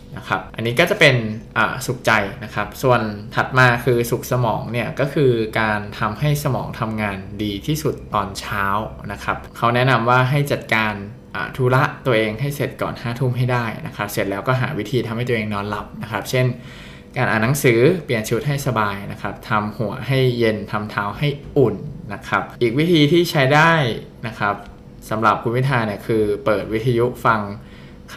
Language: Thai